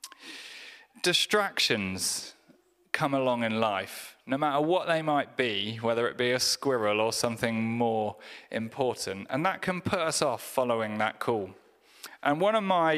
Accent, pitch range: British, 120-170 Hz